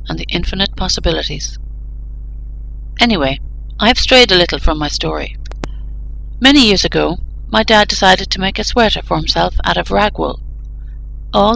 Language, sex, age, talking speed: English, female, 60-79, 155 wpm